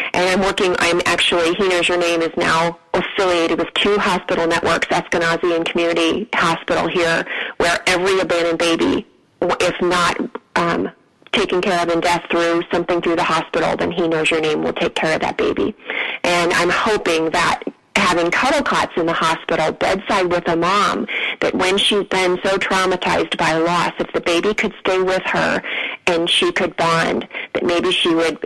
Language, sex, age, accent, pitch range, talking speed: English, female, 30-49, American, 165-185 Hz, 180 wpm